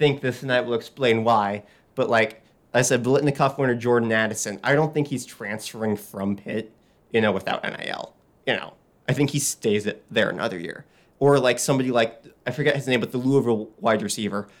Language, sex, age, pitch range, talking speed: English, male, 20-39, 110-140 Hz, 200 wpm